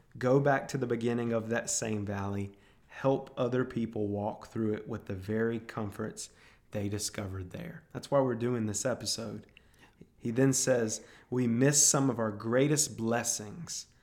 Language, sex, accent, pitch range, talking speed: English, male, American, 105-130 Hz, 165 wpm